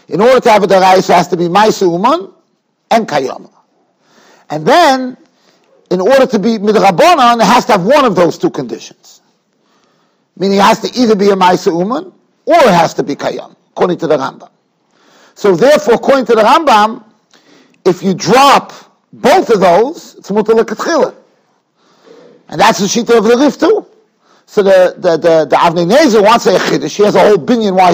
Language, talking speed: English, 190 wpm